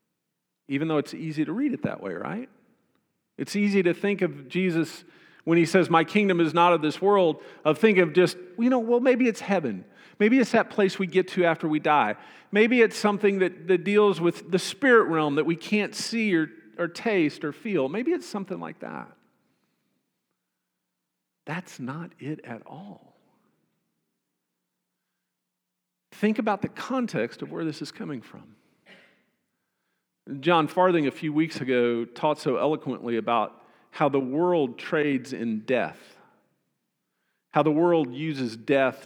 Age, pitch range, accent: 50-69, 140-195 Hz, American